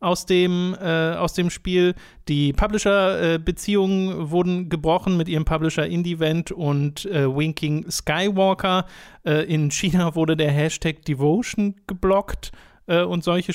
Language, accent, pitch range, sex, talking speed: German, German, 155-190 Hz, male, 135 wpm